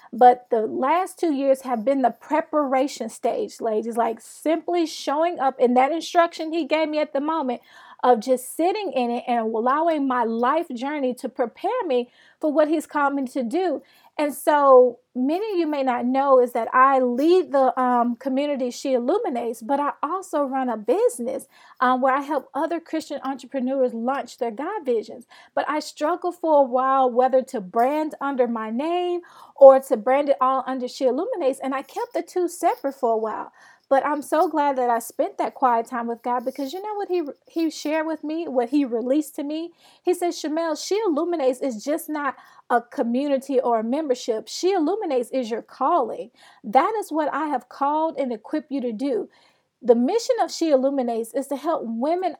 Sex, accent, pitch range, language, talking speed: female, American, 250-320 Hz, English, 195 wpm